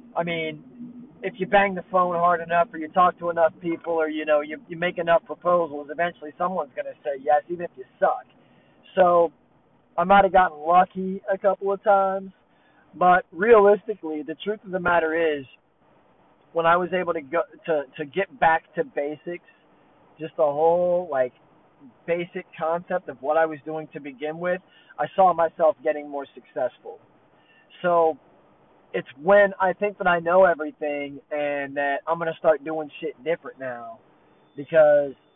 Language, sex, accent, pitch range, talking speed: English, male, American, 155-190 Hz, 175 wpm